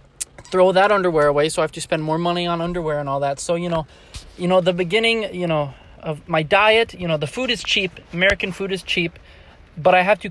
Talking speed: 245 wpm